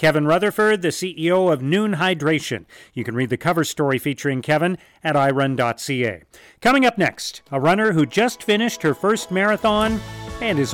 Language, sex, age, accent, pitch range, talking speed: English, male, 40-59, American, 135-190 Hz, 170 wpm